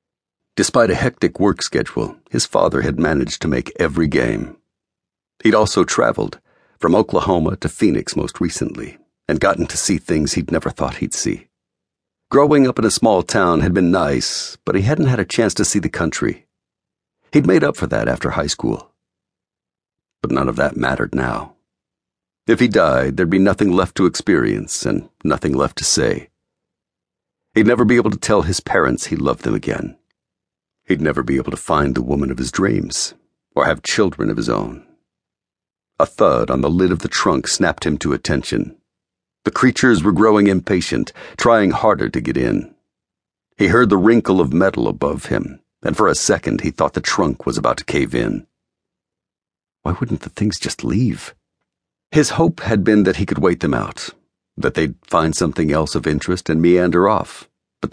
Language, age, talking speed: English, 60-79, 185 wpm